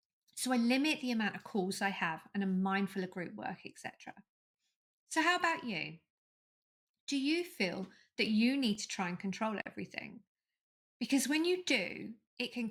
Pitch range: 190-250 Hz